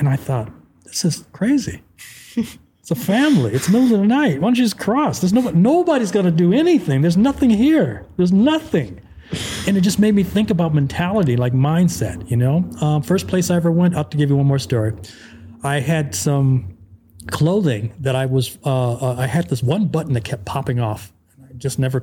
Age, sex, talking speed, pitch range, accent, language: 40-59, male, 220 wpm, 125-160 Hz, American, English